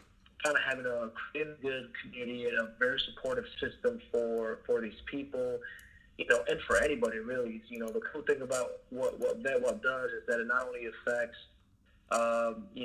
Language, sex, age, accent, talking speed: English, male, 30-49, American, 185 wpm